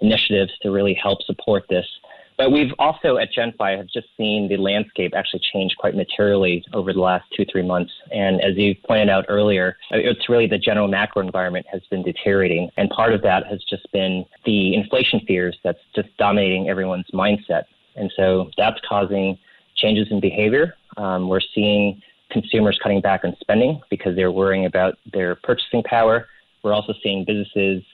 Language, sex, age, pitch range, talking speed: English, male, 30-49, 95-105 Hz, 175 wpm